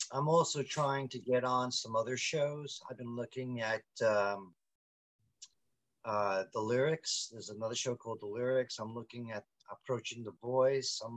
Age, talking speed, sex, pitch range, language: 50-69, 160 wpm, male, 110-130 Hz, English